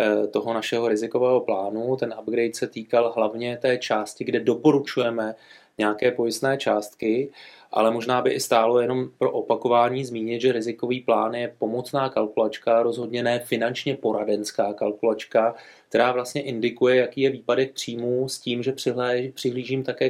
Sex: male